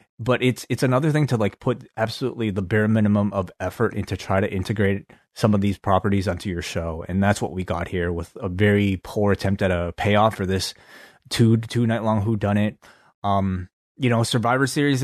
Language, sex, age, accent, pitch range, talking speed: English, male, 20-39, American, 100-115 Hz, 210 wpm